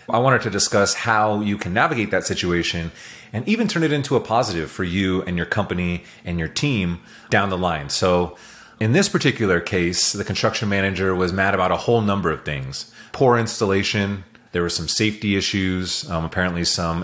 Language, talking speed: English, 190 wpm